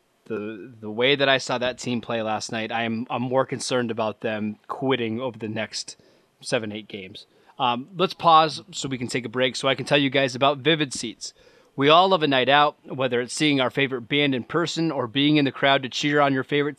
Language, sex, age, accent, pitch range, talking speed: English, male, 20-39, American, 125-155 Hz, 235 wpm